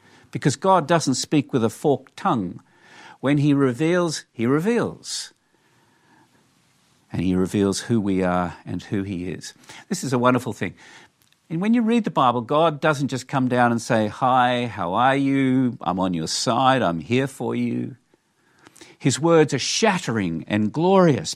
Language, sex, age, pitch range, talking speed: English, male, 50-69, 115-160 Hz, 165 wpm